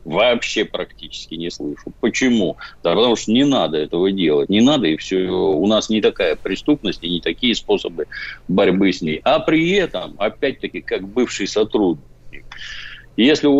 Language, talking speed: Russian, 165 wpm